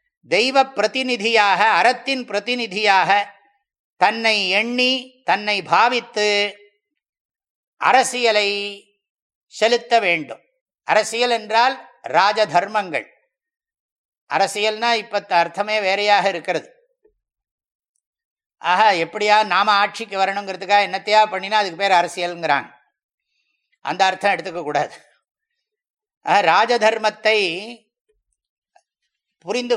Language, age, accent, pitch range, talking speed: English, 50-69, Indian, 195-250 Hz, 70 wpm